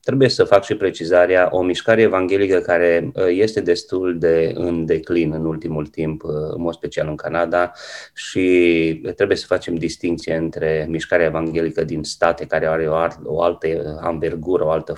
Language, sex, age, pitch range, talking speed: Romanian, male, 30-49, 80-100 Hz, 155 wpm